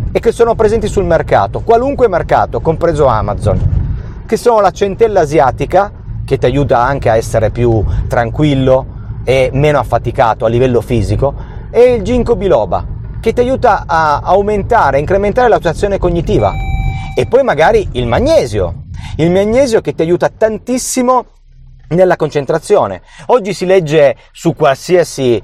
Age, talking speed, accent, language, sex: 40-59, 145 wpm, native, Italian, male